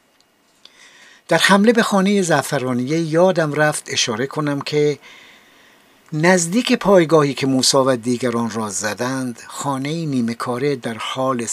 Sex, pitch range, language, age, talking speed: male, 130-190 Hz, Persian, 60-79, 120 wpm